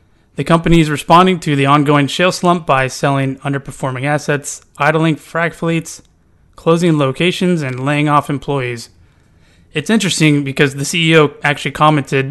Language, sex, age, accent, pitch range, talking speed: English, male, 30-49, American, 125-155 Hz, 140 wpm